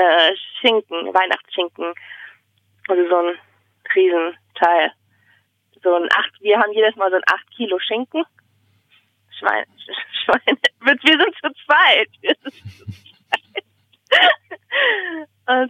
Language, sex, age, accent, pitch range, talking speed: German, female, 20-39, German, 175-240 Hz, 90 wpm